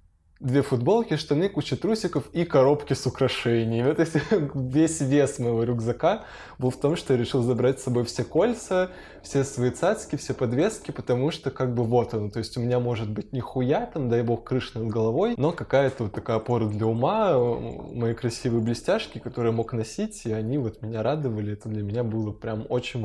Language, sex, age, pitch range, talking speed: Russian, male, 20-39, 115-135 Hz, 195 wpm